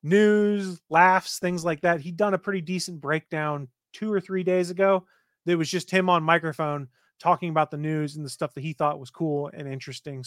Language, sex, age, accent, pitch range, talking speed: English, male, 30-49, American, 150-185 Hz, 210 wpm